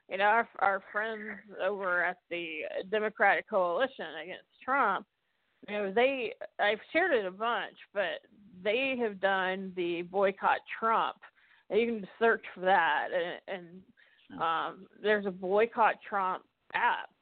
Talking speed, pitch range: 140 wpm, 185-245 Hz